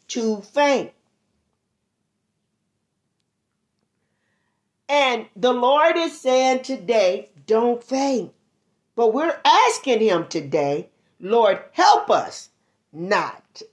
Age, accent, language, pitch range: 40-59, American, English, 200-270 Hz